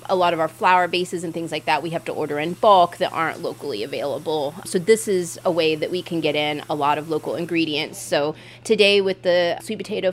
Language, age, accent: English, 30-49, American